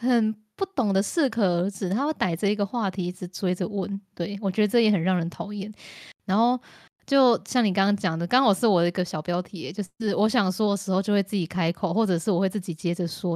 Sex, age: female, 20-39